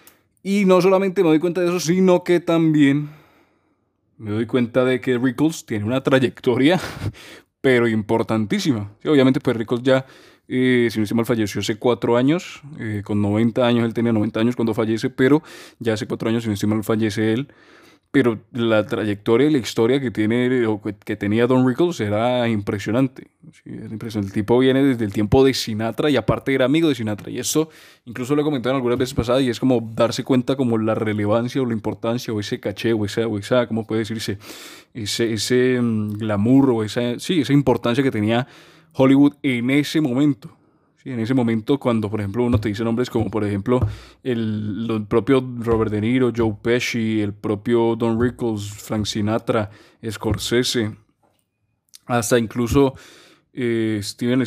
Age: 20-39